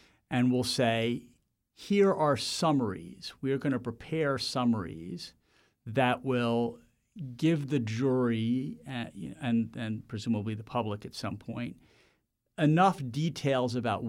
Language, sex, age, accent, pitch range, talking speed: English, male, 40-59, American, 110-130 Hz, 125 wpm